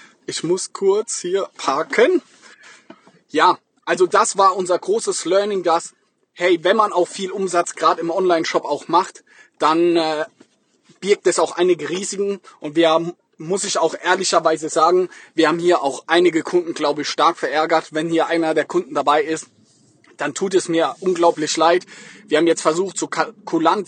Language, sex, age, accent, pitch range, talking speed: German, male, 20-39, German, 160-195 Hz, 170 wpm